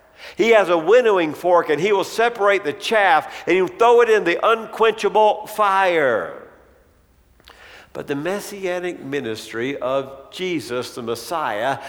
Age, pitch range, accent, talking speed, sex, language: 60-79, 125-200 Hz, American, 140 wpm, male, English